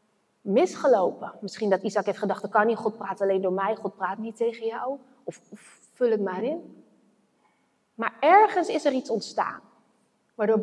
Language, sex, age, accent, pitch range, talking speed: Dutch, female, 30-49, Dutch, 215-275 Hz, 180 wpm